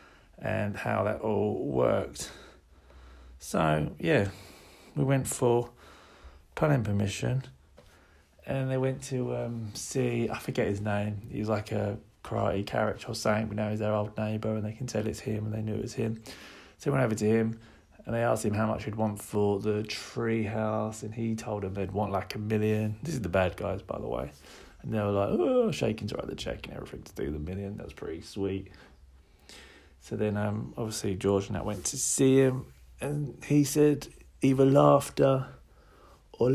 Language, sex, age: English, male, 30-49